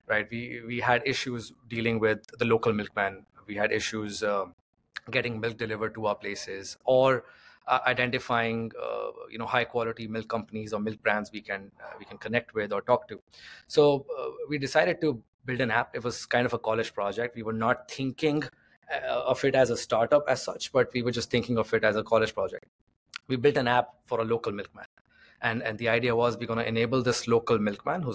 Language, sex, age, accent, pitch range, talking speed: English, male, 20-39, Indian, 110-130 Hz, 215 wpm